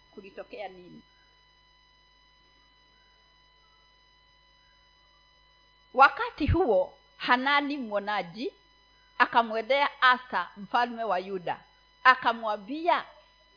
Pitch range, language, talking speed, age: 220-330 Hz, Swahili, 55 wpm, 40-59